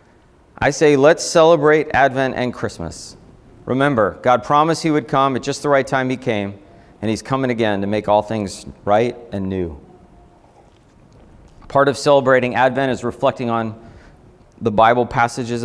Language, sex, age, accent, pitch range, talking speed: English, male, 30-49, American, 110-135 Hz, 155 wpm